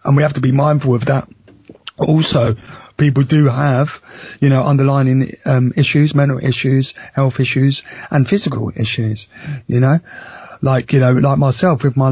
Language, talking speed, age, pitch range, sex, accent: English, 165 wpm, 20-39, 125-145 Hz, male, British